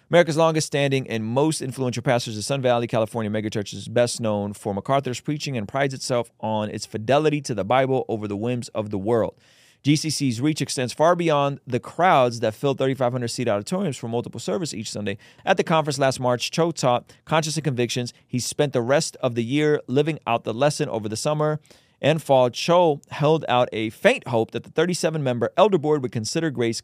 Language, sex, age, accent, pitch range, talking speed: English, male, 30-49, American, 120-150 Hz, 200 wpm